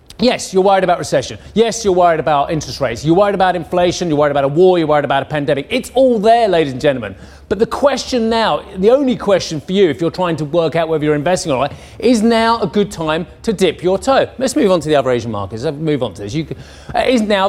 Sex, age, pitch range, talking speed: male, 30-49, 160-215 Hz, 255 wpm